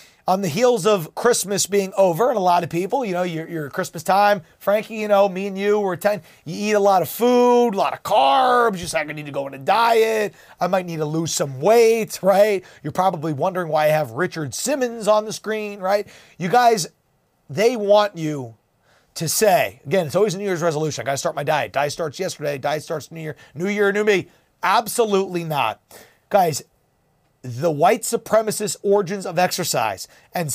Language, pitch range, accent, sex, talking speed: English, 175-230 Hz, American, male, 210 wpm